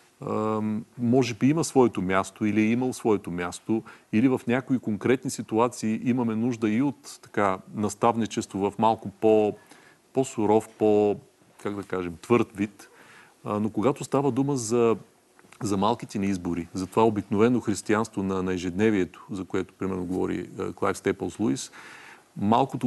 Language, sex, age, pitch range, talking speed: Bulgarian, male, 40-59, 105-125 Hz, 135 wpm